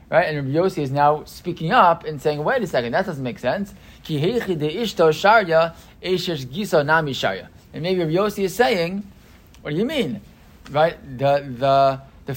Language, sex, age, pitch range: English, male, 20-39, 140-180 Hz